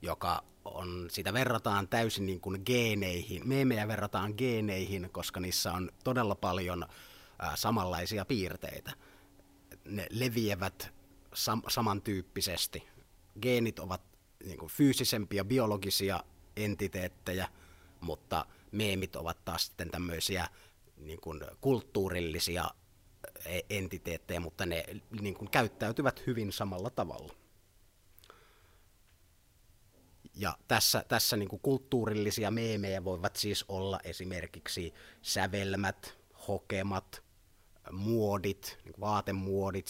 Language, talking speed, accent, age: Finnish, 85 wpm, native, 30-49